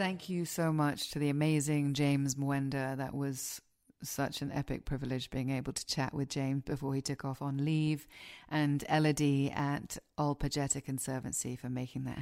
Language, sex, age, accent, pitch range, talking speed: English, female, 30-49, British, 135-150 Hz, 170 wpm